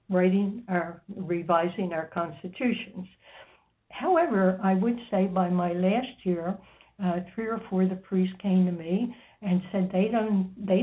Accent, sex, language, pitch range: American, female, English, 175-200 Hz